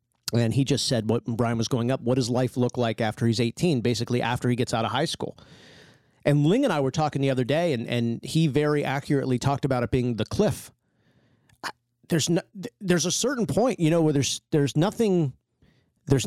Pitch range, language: 115-145 Hz, English